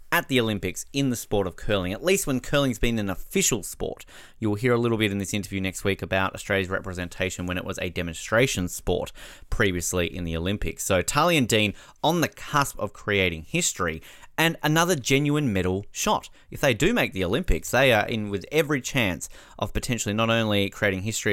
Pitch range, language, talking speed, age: 90-125 Hz, English, 205 wpm, 30-49